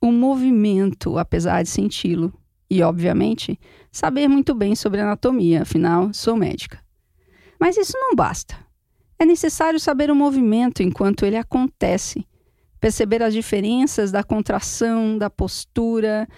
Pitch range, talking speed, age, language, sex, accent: 200-275 Hz, 130 wpm, 40-59, Portuguese, female, Brazilian